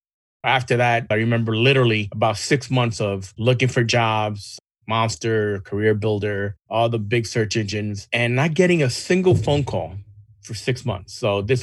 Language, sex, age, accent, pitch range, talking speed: English, male, 30-49, American, 105-125 Hz, 165 wpm